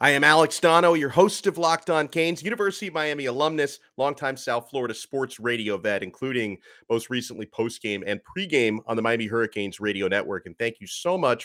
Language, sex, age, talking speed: English, male, 40-59, 205 wpm